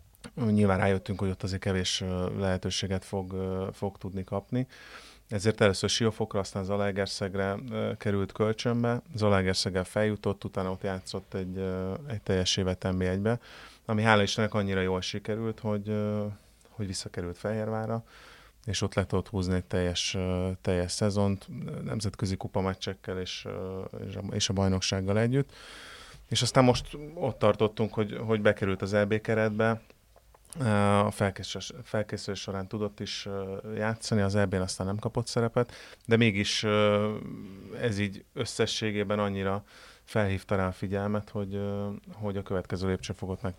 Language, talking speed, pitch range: Hungarian, 125 wpm, 95-110 Hz